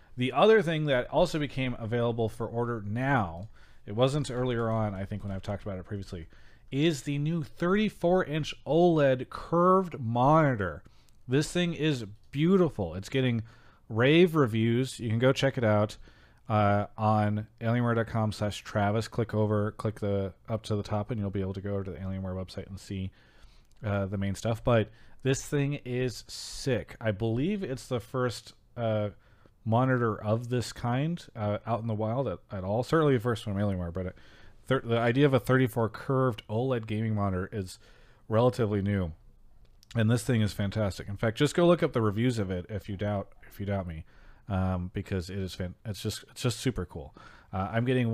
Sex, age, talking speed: male, 30-49, 190 wpm